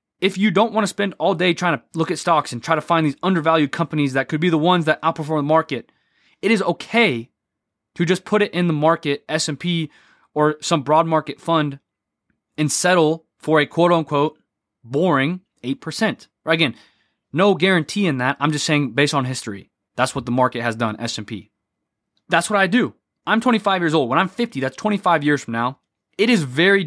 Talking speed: 200 wpm